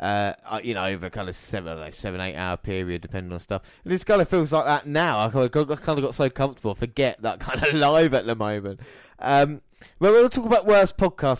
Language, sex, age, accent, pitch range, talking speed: English, male, 20-39, British, 105-135 Hz, 260 wpm